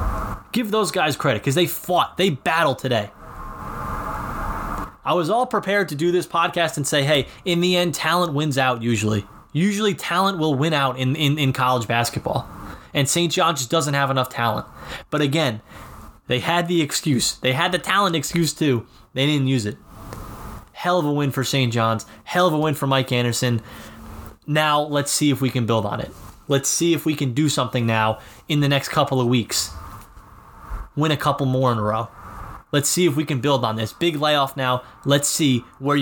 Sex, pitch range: male, 120-150 Hz